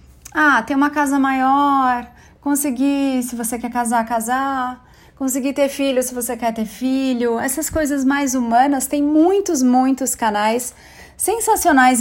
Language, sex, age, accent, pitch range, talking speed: Portuguese, female, 30-49, Brazilian, 240-285 Hz, 140 wpm